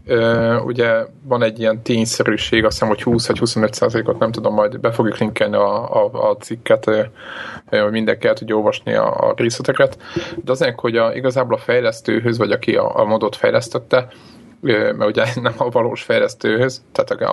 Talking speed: 175 wpm